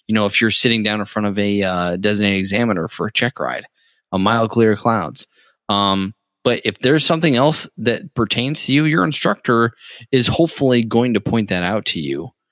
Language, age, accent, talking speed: English, 20-39, American, 200 wpm